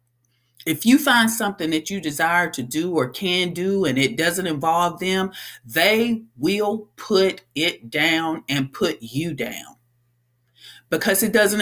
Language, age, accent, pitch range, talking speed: English, 40-59, American, 130-180 Hz, 150 wpm